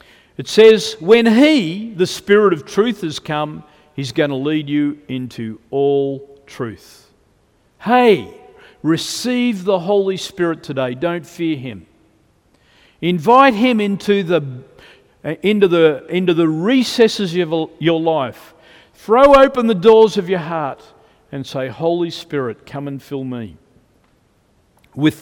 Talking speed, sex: 130 wpm, male